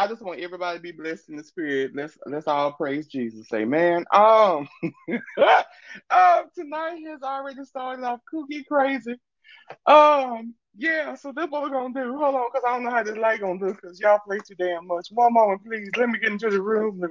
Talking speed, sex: 220 wpm, male